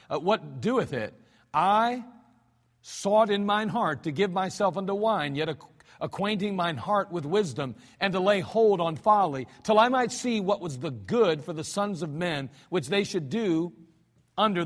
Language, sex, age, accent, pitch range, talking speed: English, male, 50-69, American, 155-215 Hz, 180 wpm